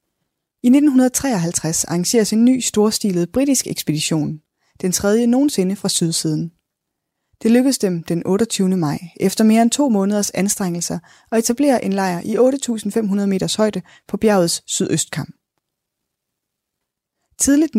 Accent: native